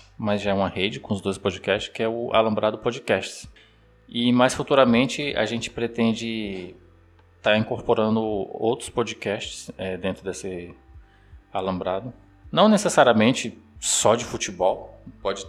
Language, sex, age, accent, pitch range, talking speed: Portuguese, male, 20-39, Brazilian, 95-115 Hz, 135 wpm